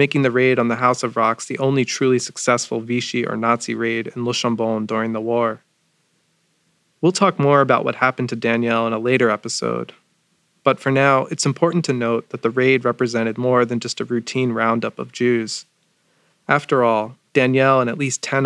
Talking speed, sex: 195 wpm, male